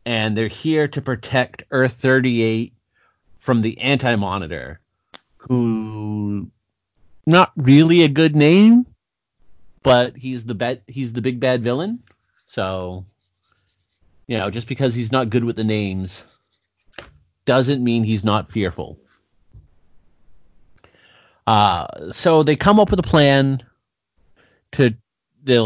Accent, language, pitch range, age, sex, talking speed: American, English, 105-130 Hz, 30-49, male, 120 wpm